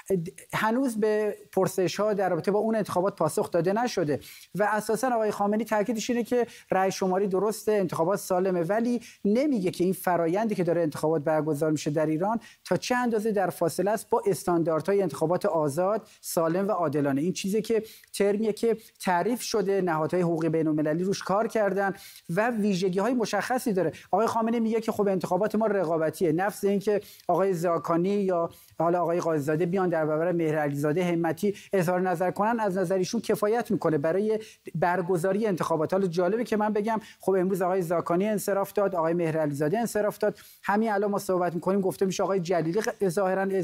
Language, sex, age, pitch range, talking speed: Persian, male, 40-59, 175-215 Hz, 165 wpm